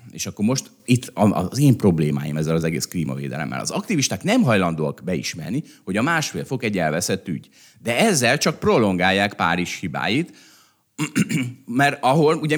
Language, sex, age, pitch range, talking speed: Hungarian, male, 30-49, 95-135 Hz, 155 wpm